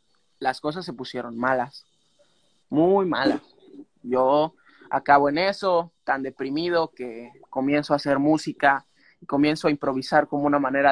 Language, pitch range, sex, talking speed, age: Spanish, 140-180 Hz, male, 135 wpm, 20-39